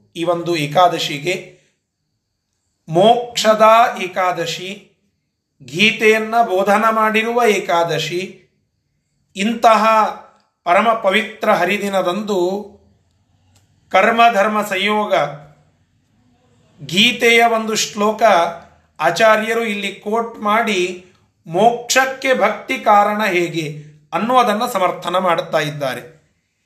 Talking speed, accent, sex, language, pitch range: 70 wpm, native, male, Kannada, 175-215 Hz